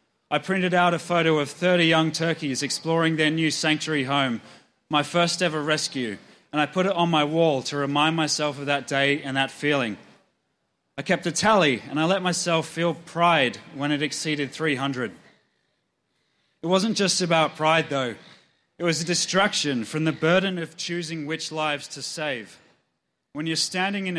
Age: 30-49